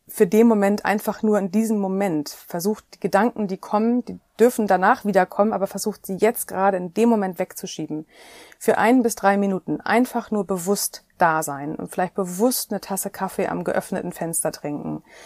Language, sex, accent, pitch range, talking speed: German, female, German, 170-210 Hz, 185 wpm